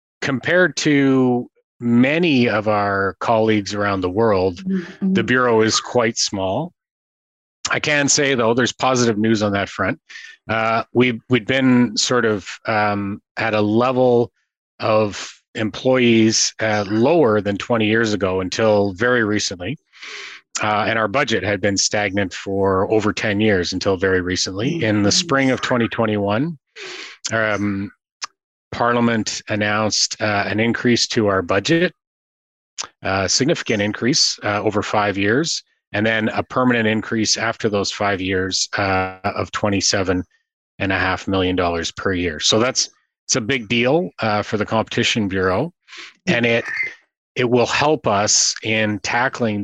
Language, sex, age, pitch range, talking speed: English, male, 30-49, 100-120 Hz, 145 wpm